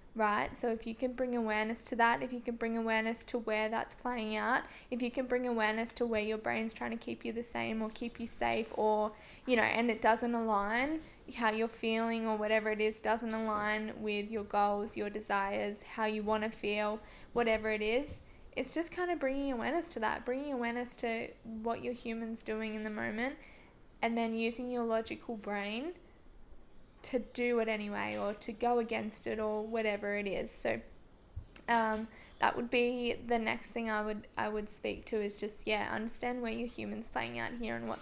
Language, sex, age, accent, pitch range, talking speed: English, female, 10-29, Australian, 210-235 Hz, 205 wpm